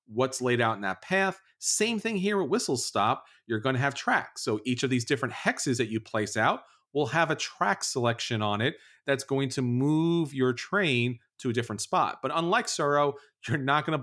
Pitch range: 120-160 Hz